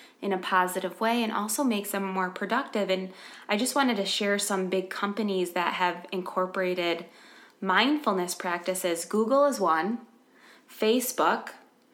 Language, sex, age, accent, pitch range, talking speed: English, female, 20-39, American, 180-220 Hz, 140 wpm